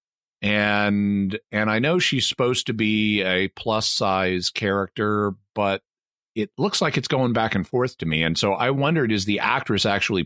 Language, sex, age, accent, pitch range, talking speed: English, male, 50-69, American, 100-125 Hz, 180 wpm